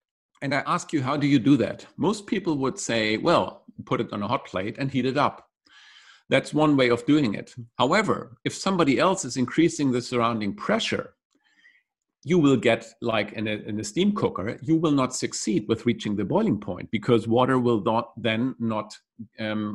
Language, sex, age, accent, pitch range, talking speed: English, male, 50-69, German, 115-150 Hz, 195 wpm